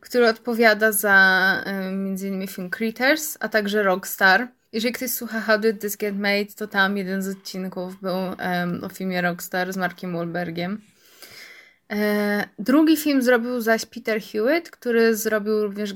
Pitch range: 200-255 Hz